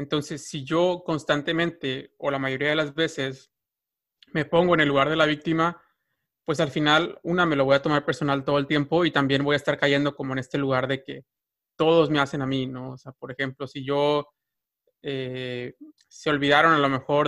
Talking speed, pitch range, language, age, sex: 210 wpm, 135-155 Hz, Spanish, 30-49, male